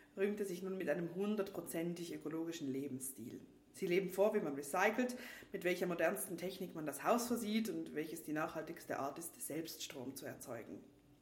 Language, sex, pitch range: English, female, 155-195 Hz